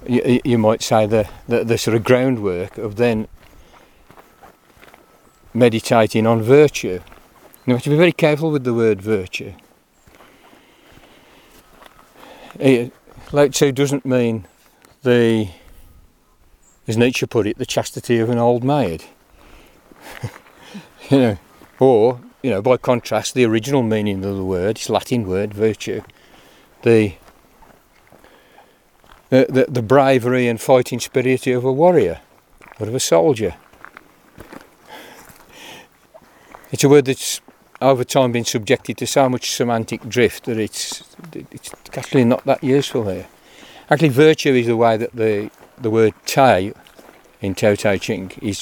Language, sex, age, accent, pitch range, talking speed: English, male, 50-69, British, 105-130 Hz, 135 wpm